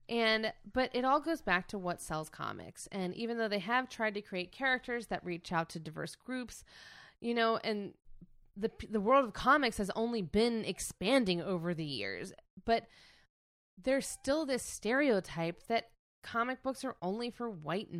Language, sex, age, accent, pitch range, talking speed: English, female, 20-39, American, 175-240 Hz, 175 wpm